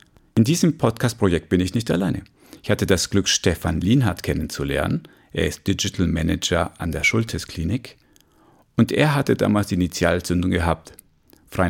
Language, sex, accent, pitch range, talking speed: German, male, German, 90-110 Hz, 150 wpm